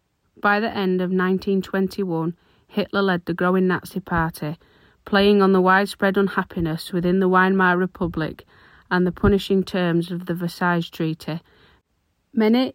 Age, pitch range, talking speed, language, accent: 30-49, 175-200 Hz, 135 wpm, English, British